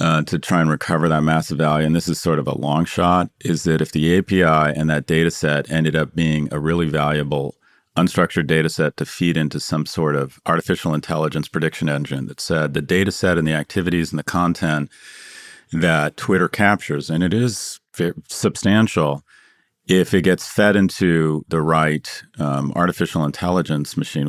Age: 40-59